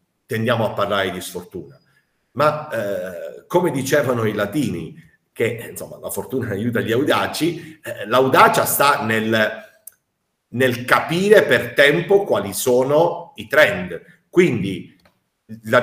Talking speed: 120 wpm